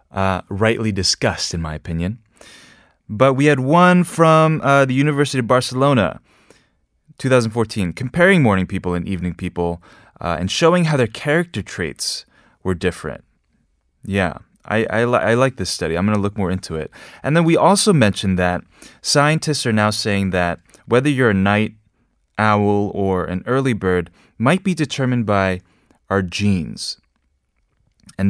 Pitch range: 90-130 Hz